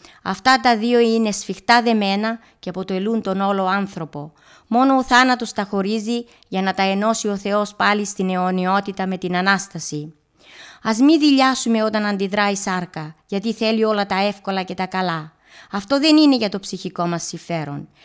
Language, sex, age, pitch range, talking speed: Greek, female, 30-49, 190-235 Hz, 170 wpm